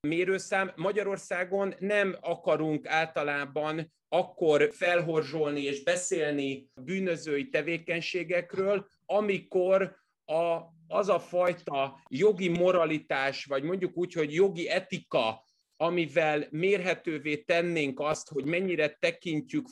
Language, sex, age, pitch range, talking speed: Hungarian, male, 30-49, 150-180 Hz, 95 wpm